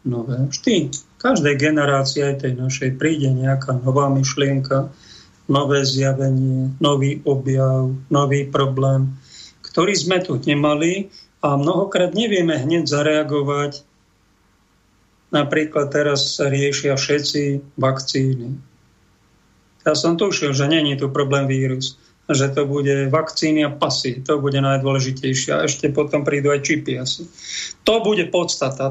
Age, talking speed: 40-59, 120 wpm